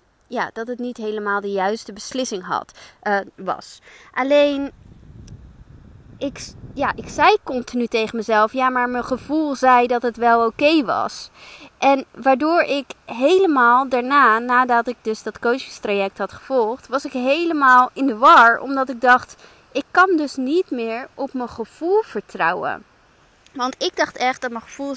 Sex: female